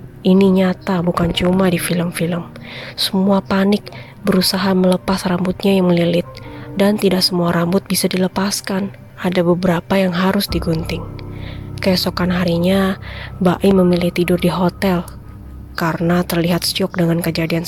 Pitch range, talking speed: 165-190 Hz, 120 wpm